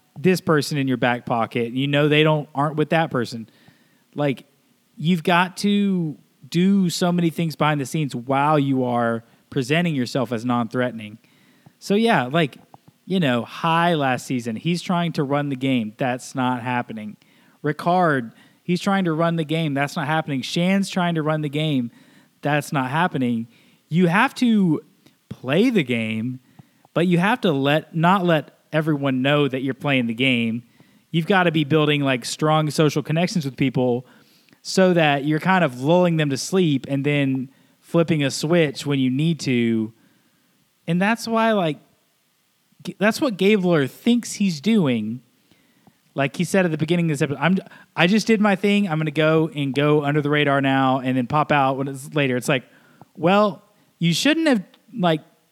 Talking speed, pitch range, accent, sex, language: 180 wpm, 135-180 Hz, American, male, English